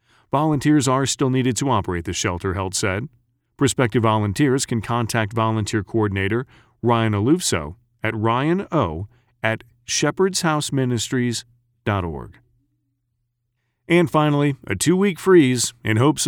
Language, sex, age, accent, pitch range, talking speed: English, male, 40-59, American, 110-140 Hz, 110 wpm